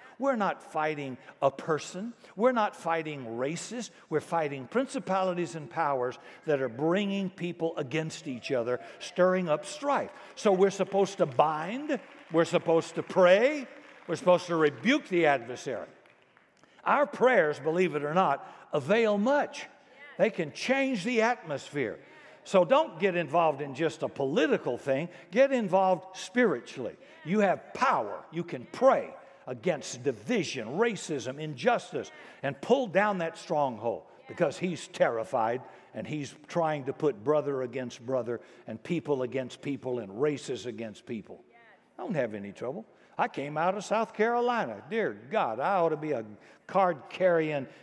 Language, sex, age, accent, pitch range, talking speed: English, male, 60-79, American, 145-215 Hz, 150 wpm